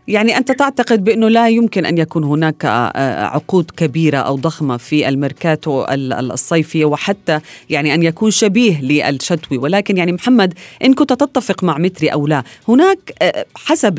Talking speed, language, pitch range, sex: 145 wpm, Arabic, 145-220 Hz, female